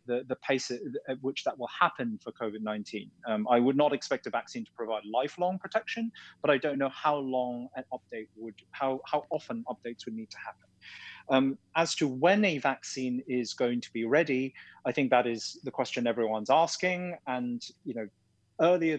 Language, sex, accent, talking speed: English, male, British, 195 wpm